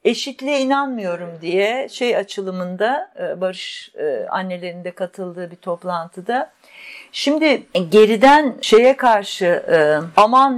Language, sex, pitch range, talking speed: Turkish, female, 185-245 Hz, 85 wpm